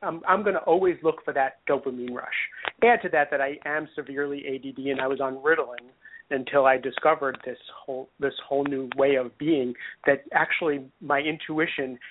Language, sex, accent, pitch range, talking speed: English, male, American, 135-160 Hz, 185 wpm